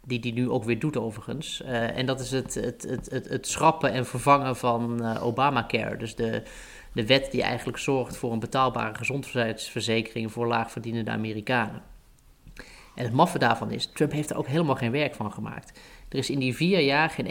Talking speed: 195 wpm